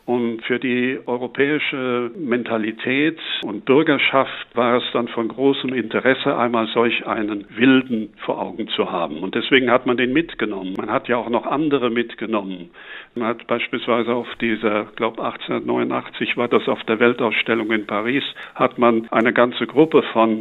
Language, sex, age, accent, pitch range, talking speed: German, male, 60-79, German, 110-125 Hz, 160 wpm